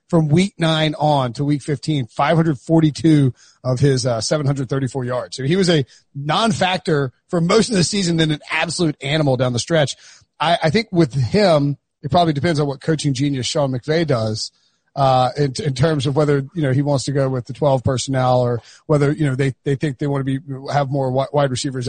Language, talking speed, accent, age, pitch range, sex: English, 210 wpm, American, 30-49, 135-165 Hz, male